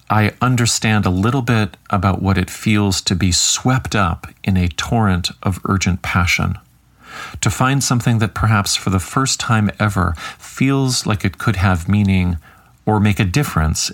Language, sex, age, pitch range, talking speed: English, male, 40-59, 90-115 Hz, 170 wpm